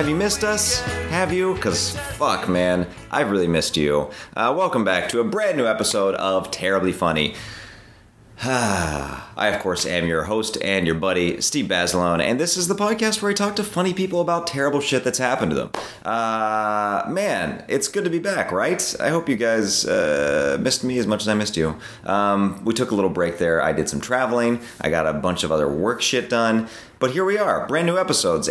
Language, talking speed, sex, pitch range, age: English, 215 wpm, male, 90-130 Hz, 30-49